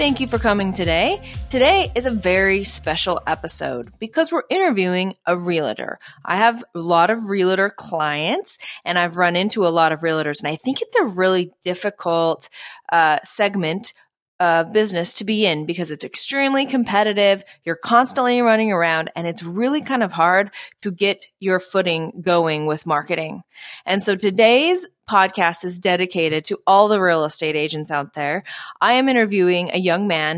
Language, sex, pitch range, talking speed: English, female, 165-210 Hz, 170 wpm